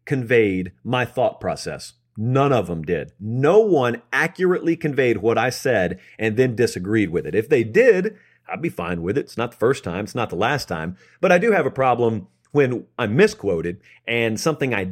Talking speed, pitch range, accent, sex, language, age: 200 wpm, 110-150 Hz, American, male, English, 40-59